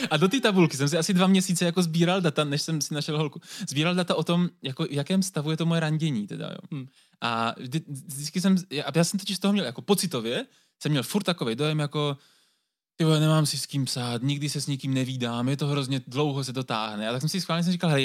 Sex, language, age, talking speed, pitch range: male, Czech, 20-39, 255 wpm, 135-175 Hz